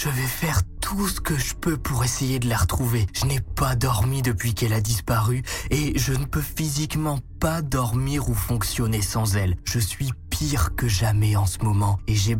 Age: 20-39